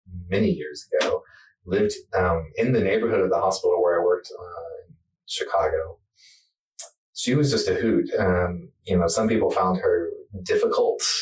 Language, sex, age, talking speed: English, male, 30-49, 160 wpm